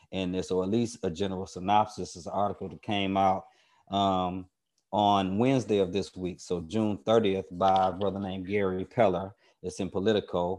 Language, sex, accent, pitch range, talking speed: English, male, American, 90-100 Hz, 175 wpm